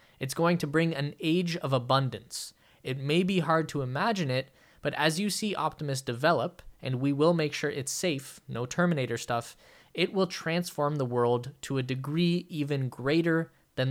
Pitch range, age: 130-165 Hz, 20-39